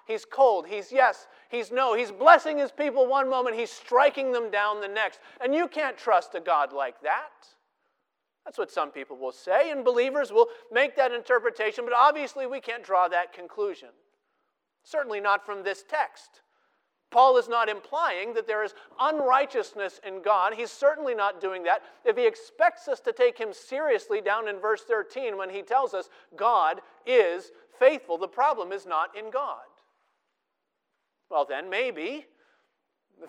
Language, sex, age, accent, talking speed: English, male, 40-59, American, 170 wpm